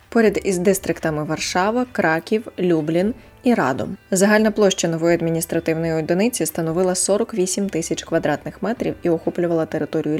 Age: 20-39